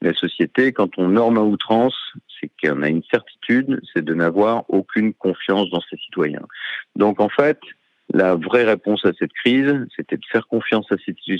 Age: 50-69